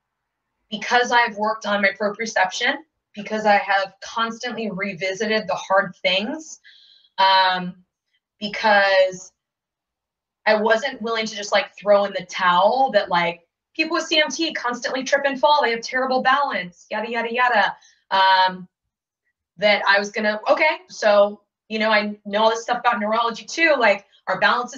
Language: English